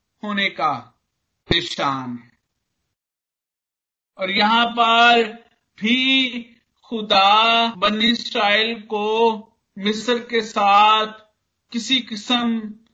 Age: 50-69